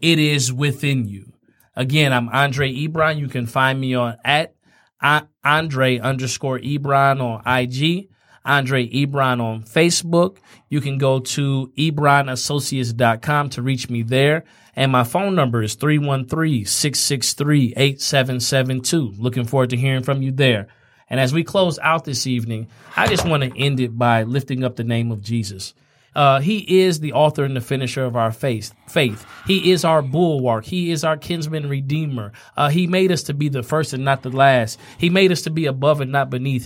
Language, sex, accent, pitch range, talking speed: English, male, American, 125-155 Hz, 175 wpm